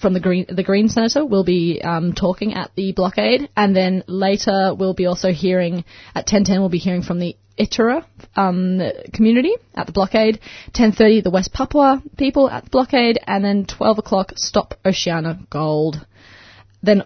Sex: female